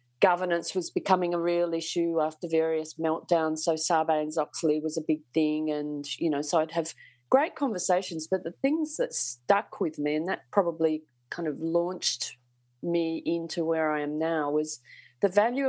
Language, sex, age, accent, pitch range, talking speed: English, female, 40-59, Australian, 150-175 Hz, 170 wpm